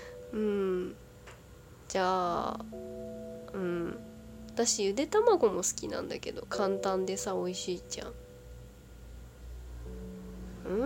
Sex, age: female, 20-39